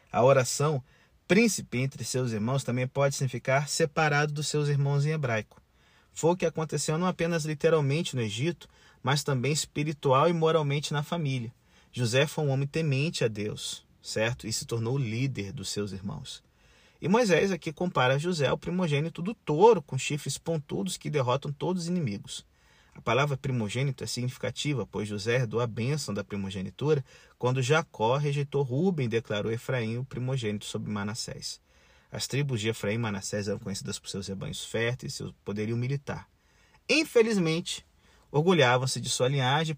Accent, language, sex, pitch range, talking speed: Brazilian, Portuguese, male, 120-160 Hz, 165 wpm